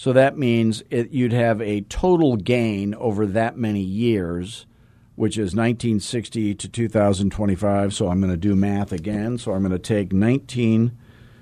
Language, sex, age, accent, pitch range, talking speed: English, male, 50-69, American, 105-120 Hz, 160 wpm